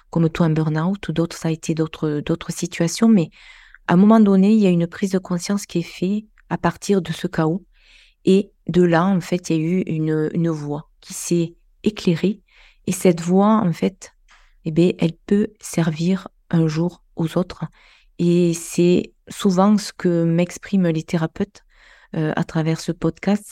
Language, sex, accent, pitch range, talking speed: French, female, French, 160-185 Hz, 180 wpm